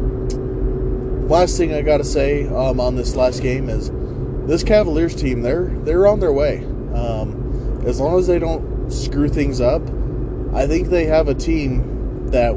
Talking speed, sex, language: 170 wpm, male, English